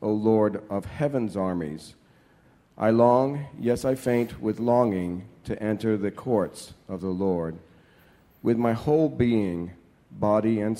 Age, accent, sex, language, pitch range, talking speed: 50-69, American, male, English, 95-120 Hz, 140 wpm